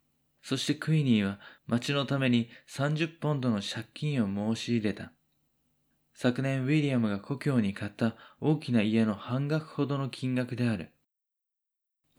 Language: Japanese